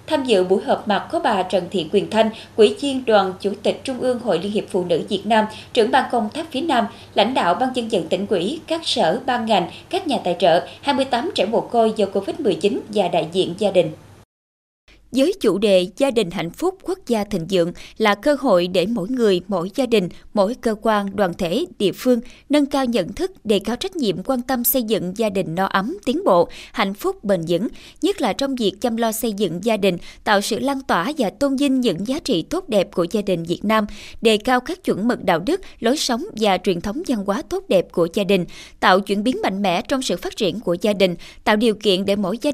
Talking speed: 240 wpm